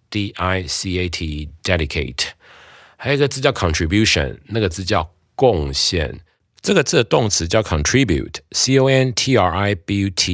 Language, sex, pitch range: Chinese, male, 80-115 Hz